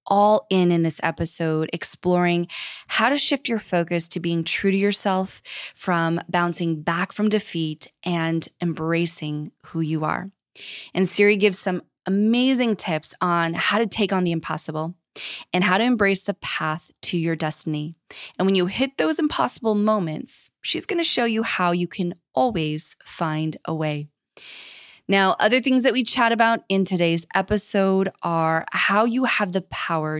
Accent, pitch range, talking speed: American, 165-205 Hz, 165 wpm